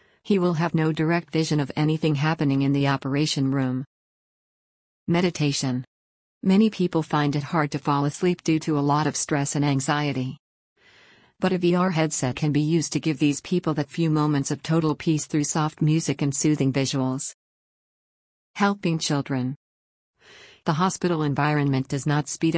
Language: English